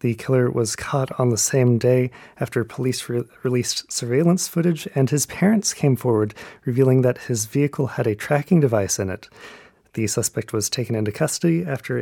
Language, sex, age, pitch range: Korean, male, 30-49, 115-145 Hz